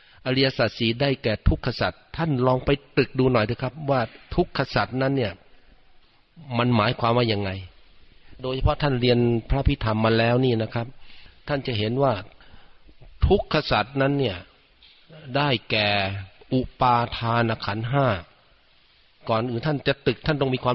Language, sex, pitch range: Thai, male, 110-140 Hz